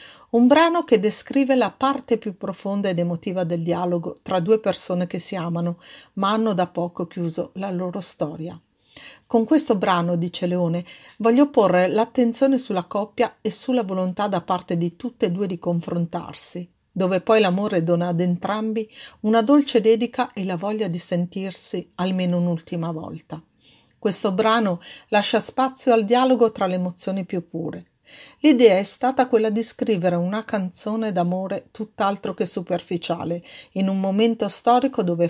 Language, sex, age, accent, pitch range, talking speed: Italian, female, 50-69, native, 175-225 Hz, 155 wpm